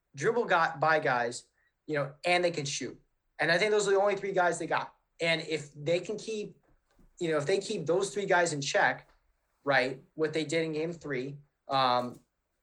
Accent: American